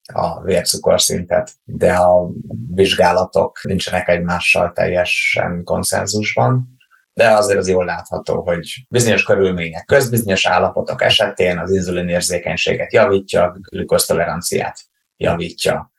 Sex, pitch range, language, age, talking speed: male, 90-105 Hz, Hungarian, 30-49, 100 wpm